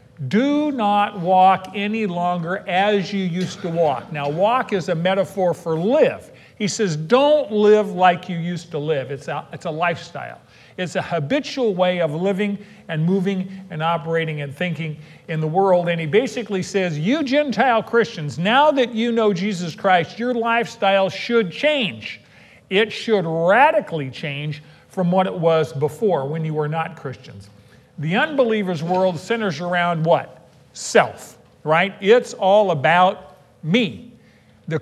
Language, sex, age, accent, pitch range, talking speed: English, male, 50-69, American, 165-210 Hz, 155 wpm